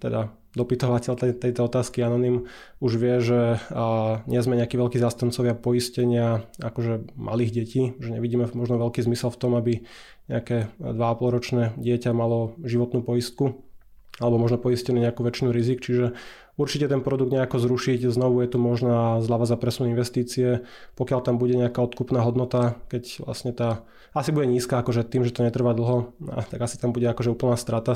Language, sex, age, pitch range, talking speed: Slovak, male, 20-39, 115-125 Hz, 170 wpm